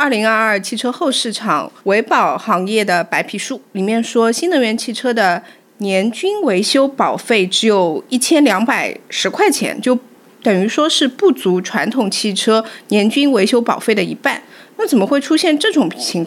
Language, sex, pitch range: Chinese, female, 195-270 Hz